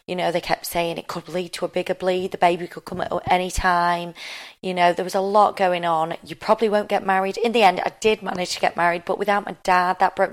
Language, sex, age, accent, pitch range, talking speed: English, female, 30-49, British, 175-200 Hz, 275 wpm